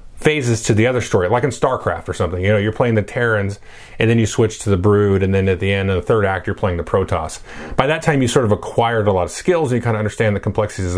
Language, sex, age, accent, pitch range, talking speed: English, male, 30-49, American, 95-125 Hz, 295 wpm